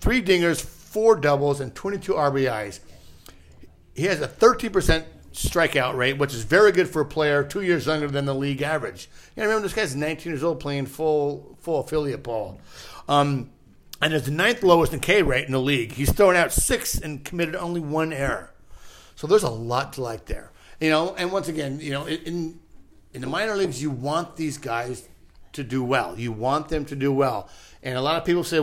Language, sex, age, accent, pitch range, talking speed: English, male, 50-69, American, 135-170 Hz, 210 wpm